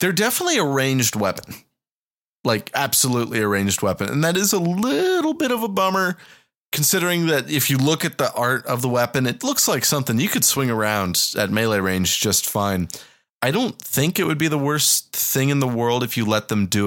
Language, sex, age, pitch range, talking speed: English, male, 30-49, 100-160 Hz, 215 wpm